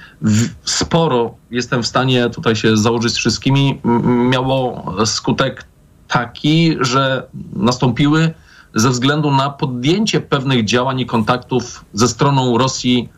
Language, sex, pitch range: Polish, male, 115-140 Hz